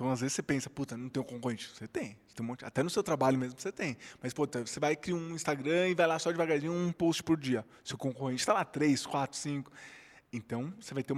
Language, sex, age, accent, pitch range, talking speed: Portuguese, male, 20-39, Brazilian, 125-160 Hz, 270 wpm